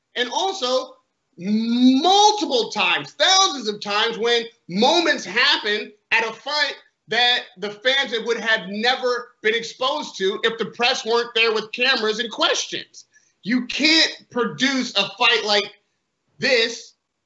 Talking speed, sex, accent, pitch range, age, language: 130 wpm, male, American, 205-250 Hz, 30-49, English